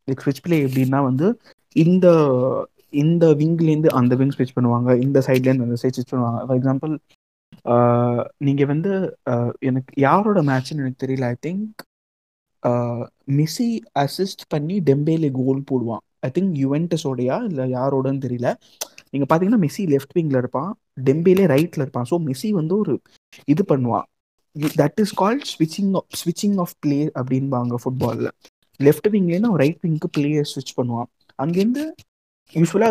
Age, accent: 20-39, native